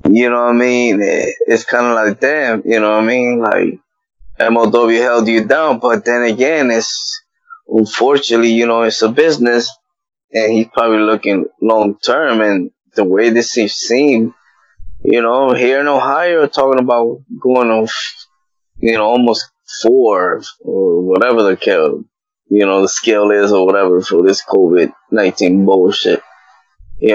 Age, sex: 20-39, male